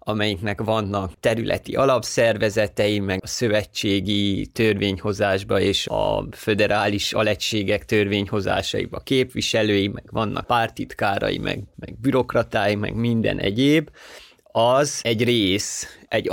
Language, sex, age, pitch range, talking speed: Hungarian, male, 30-49, 105-120 Hz, 100 wpm